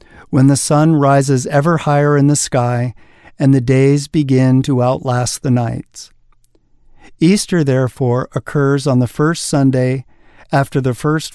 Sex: male